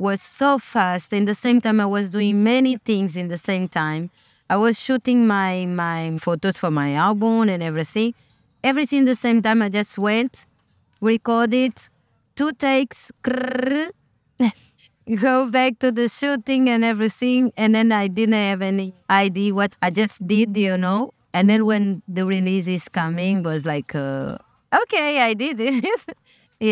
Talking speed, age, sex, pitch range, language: 165 wpm, 20-39, female, 180-225 Hz, English